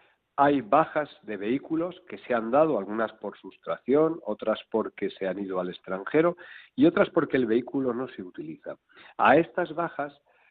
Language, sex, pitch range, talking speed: Spanish, male, 120-150 Hz, 165 wpm